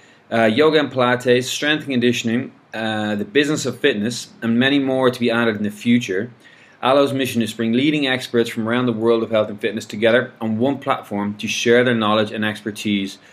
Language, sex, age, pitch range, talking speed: English, male, 20-39, 105-120 Hz, 205 wpm